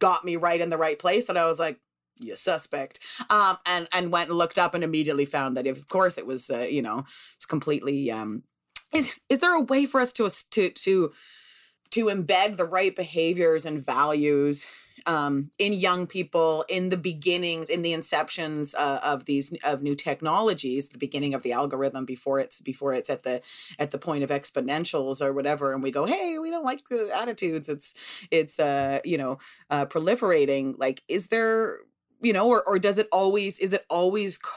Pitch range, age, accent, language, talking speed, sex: 145-185 Hz, 30-49, American, English, 200 wpm, female